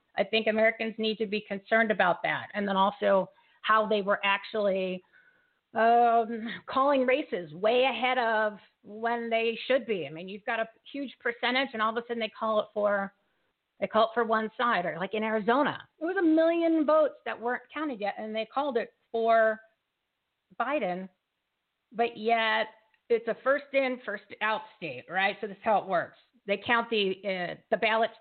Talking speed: 190 wpm